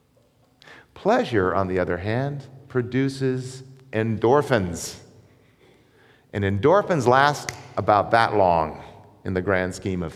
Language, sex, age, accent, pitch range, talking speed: English, male, 50-69, American, 110-145 Hz, 105 wpm